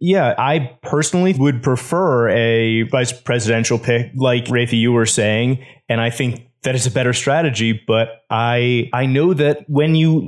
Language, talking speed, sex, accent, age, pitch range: English, 170 wpm, male, American, 20-39, 115-135 Hz